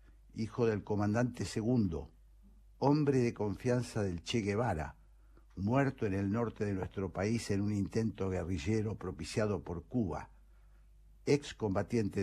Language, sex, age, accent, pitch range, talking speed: Spanish, male, 60-79, Argentinian, 90-115 Hz, 130 wpm